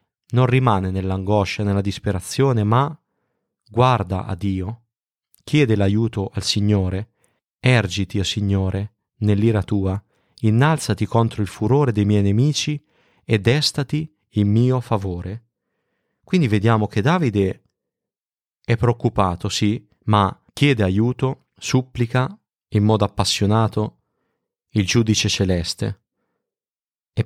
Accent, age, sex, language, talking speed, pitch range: native, 30-49, male, Italian, 110 wpm, 100-125 Hz